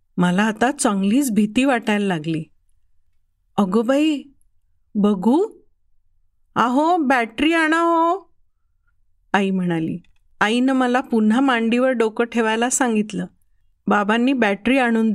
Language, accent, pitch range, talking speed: Marathi, native, 180-275 Hz, 95 wpm